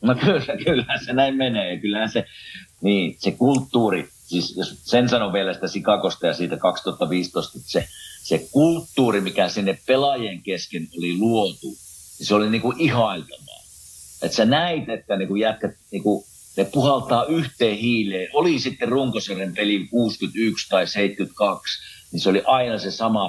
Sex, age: male, 50-69